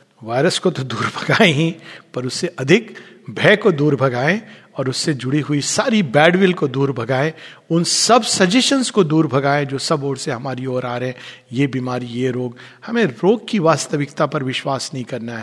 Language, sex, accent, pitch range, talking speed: Hindi, male, native, 135-190 Hz, 190 wpm